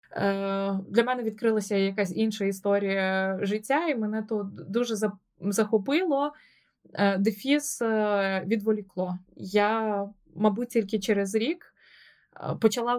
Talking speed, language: 90 wpm, Ukrainian